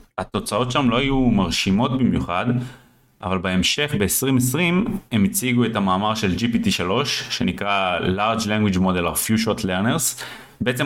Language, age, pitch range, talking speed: Hebrew, 20-39, 100-130 Hz, 135 wpm